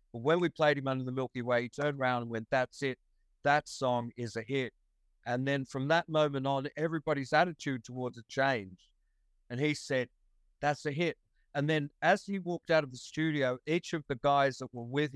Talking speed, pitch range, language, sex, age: 215 wpm, 120-150 Hz, English, male, 50-69